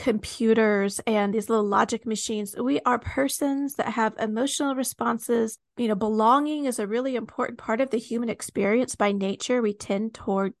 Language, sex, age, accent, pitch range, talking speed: English, female, 40-59, American, 220-280 Hz, 170 wpm